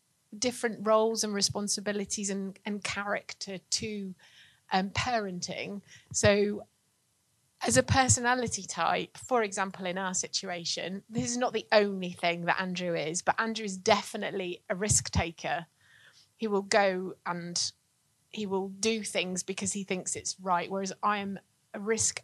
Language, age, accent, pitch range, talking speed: English, 30-49, British, 185-215 Hz, 145 wpm